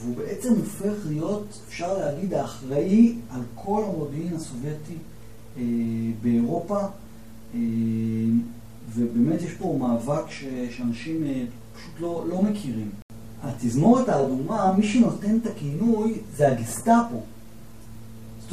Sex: male